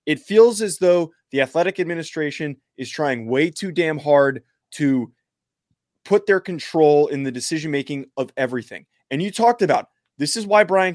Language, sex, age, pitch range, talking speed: English, male, 20-39, 135-170 Hz, 170 wpm